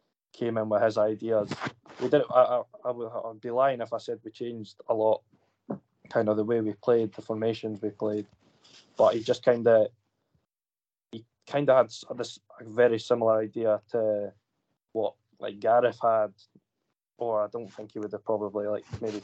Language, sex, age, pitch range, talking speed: English, male, 20-39, 105-115 Hz, 185 wpm